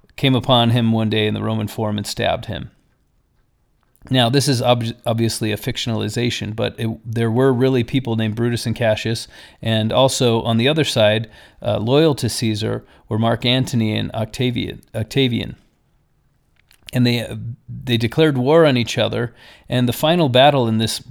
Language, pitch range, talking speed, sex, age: English, 110-135 Hz, 170 wpm, male, 40-59